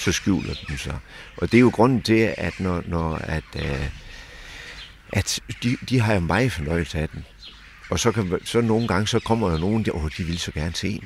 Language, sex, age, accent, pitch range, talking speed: Danish, male, 60-79, native, 80-100 Hz, 230 wpm